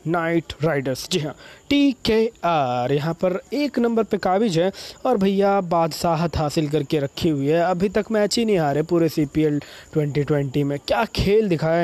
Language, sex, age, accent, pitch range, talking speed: Hindi, male, 20-39, native, 160-205 Hz, 190 wpm